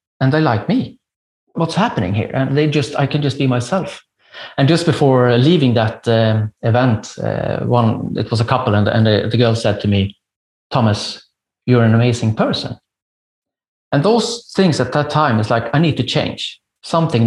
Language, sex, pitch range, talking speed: English, male, 110-140 Hz, 190 wpm